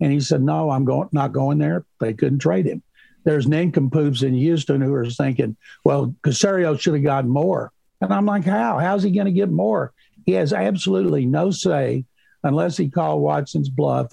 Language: English